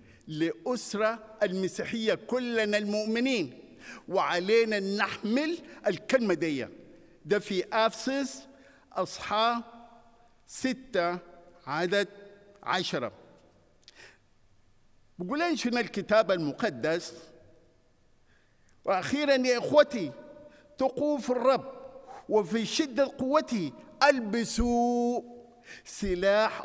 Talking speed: 70 wpm